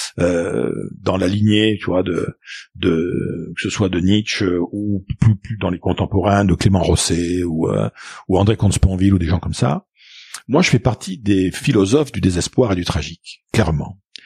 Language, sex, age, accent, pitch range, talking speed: French, male, 50-69, French, 95-150 Hz, 185 wpm